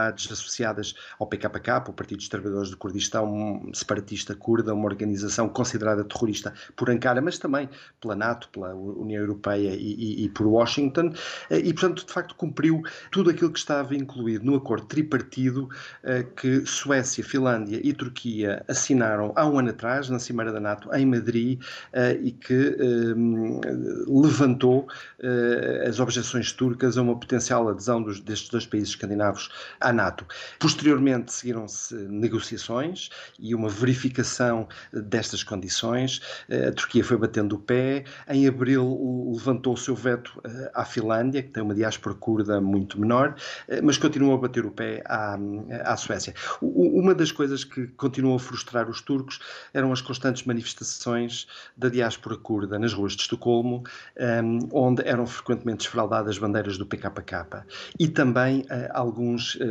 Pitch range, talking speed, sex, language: 110-130 Hz, 145 wpm, male, Portuguese